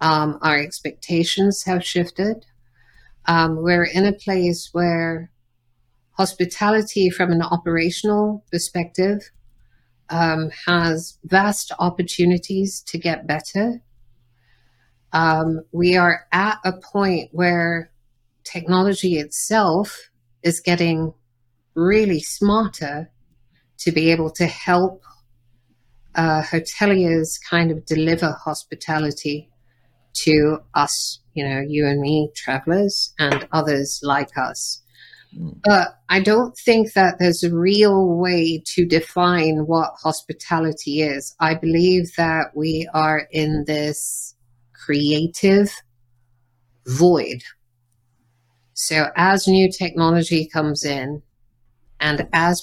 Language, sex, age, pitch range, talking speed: English, female, 50-69, 140-180 Hz, 105 wpm